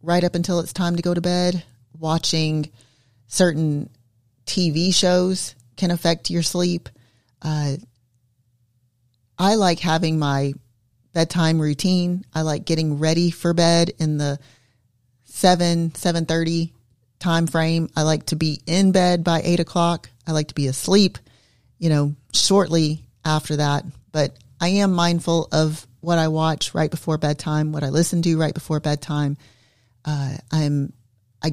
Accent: American